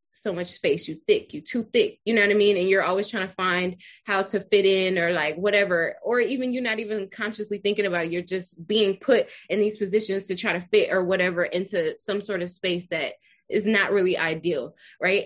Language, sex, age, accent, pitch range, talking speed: English, female, 20-39, American, 180-210 Hz, 230 wpm